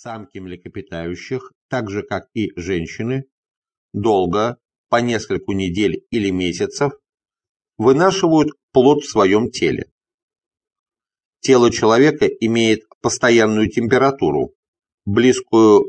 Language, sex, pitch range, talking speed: English, male, 105-145 Hz, 90 wpm